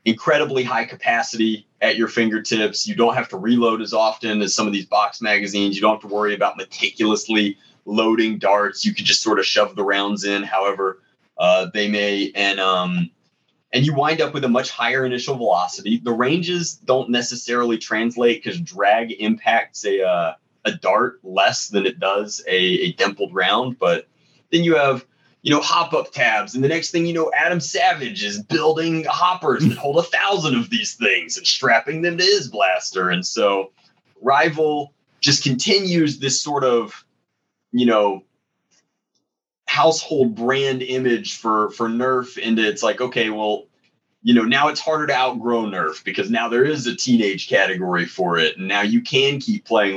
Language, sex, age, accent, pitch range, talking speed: English, male, 30-49, American, 105-150 Hz, 180 wpm